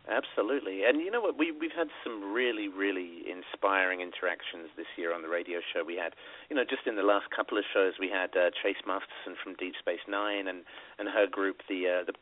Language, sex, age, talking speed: English, male, 40-59, 220 wpm